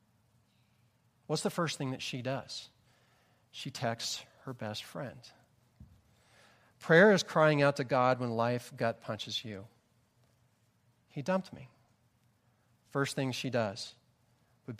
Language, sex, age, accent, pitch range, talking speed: English, male, 40-59, American, 120-140 Hz, 125 wpm